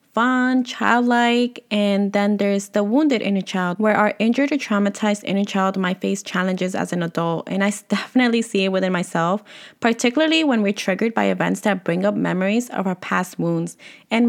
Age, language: 20-39, English